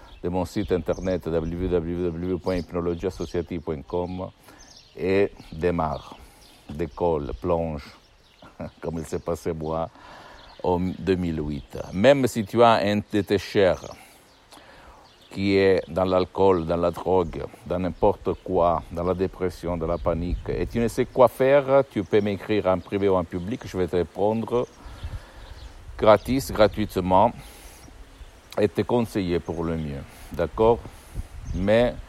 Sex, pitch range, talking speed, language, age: male, 85-100 Hz, 125 wpm, Italian, 60-79